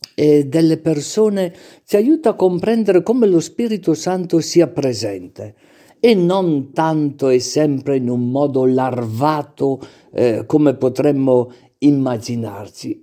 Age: 50-69